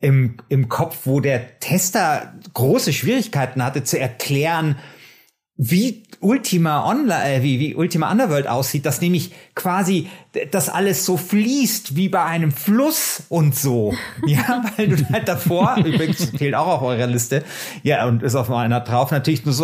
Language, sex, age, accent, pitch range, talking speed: German, male, 30-49, German, 130-180 Hz, 160 wpm